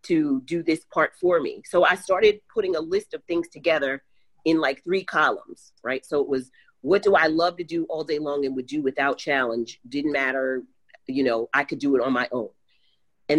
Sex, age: female, 40-59